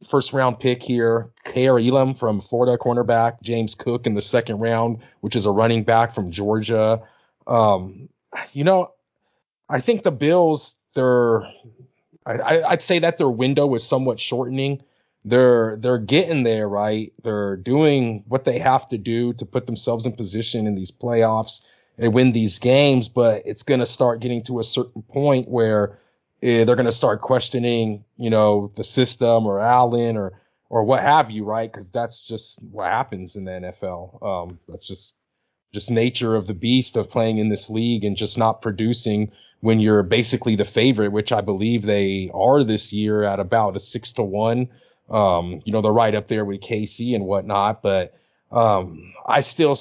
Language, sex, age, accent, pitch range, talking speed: English, male, 30-49, American, 105-125 Hz, 180 wpm